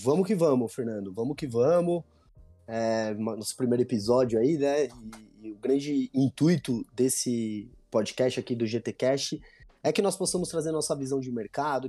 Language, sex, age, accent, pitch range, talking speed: Portuguese, male, 20-39, Brazilian, 105-130 Hz, 165 wpm